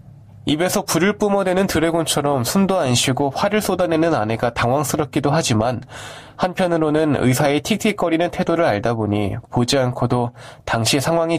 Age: 20-39